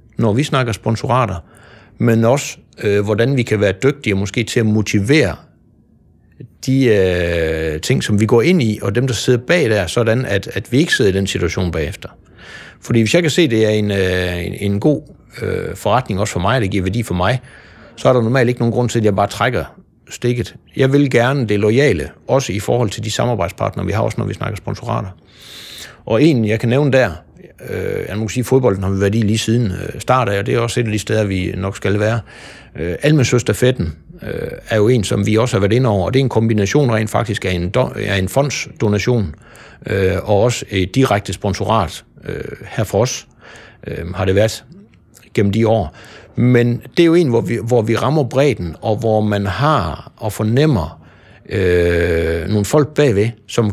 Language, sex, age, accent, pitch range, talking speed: Danish, male, 60-79, native, 100-125 Hz, 195 wpm